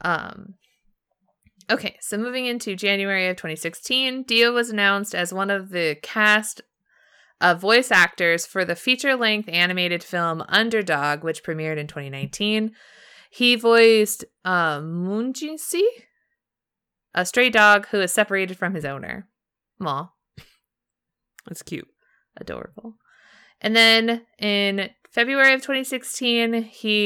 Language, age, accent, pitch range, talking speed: English, 20-39, American, 175-230 Hz, 120 wpm